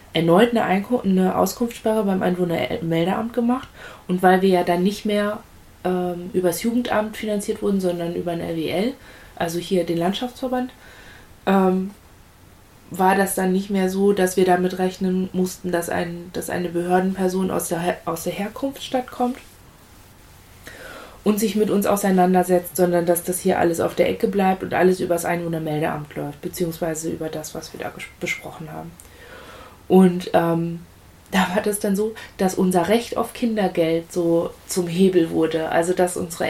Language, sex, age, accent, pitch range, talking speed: German, female, 20-39, German, 170-205 Hz, 160 wpm